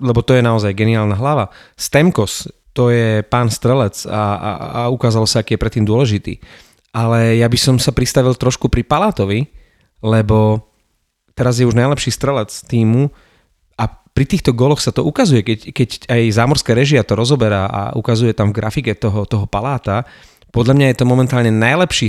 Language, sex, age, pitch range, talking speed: Slovak, male, 30-49, 110-135 Hz, 175 wpm